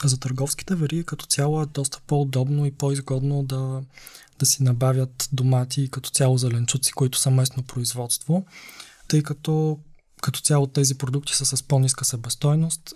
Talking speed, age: 155 wpm, 20-39